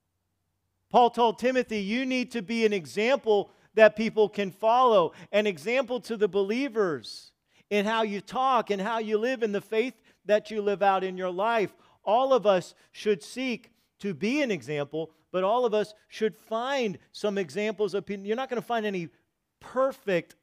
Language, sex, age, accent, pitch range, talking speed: English, male, 50-69, American, 175-230 Hz, 180 wpm